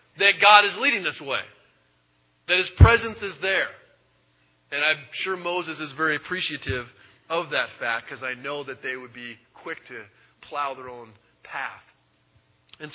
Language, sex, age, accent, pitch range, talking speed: English, male, 40-59, American, 120-175 Hz, 160 wpm